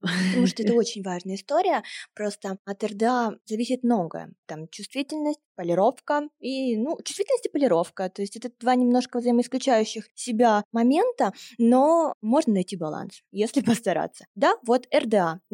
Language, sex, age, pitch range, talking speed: Russian, female, 20-39, 200-255 Hz, 140 wpm